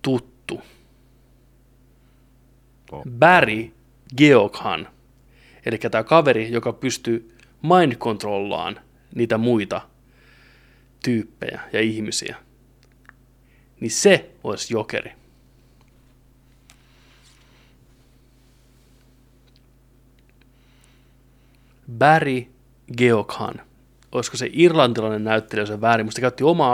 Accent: native